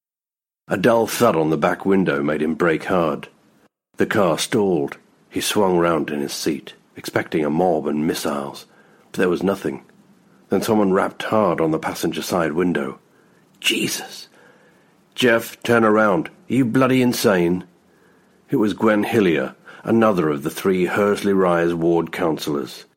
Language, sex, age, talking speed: English, male, 60-79, 150 wpm